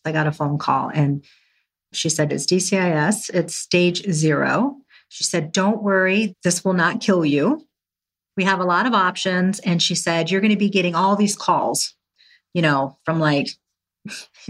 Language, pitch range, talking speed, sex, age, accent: English, 165-215 Hz, 180 wpm, female, 40-59, American